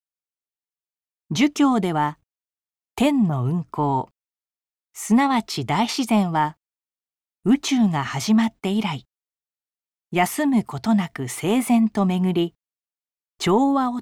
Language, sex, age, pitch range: Japanese, female, 40-59, 150-235 Hz